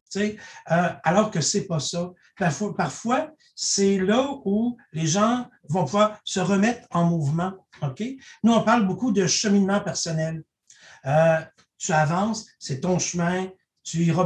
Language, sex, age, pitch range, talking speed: French, male, 60-79, 165-210 Hz, 150 wpm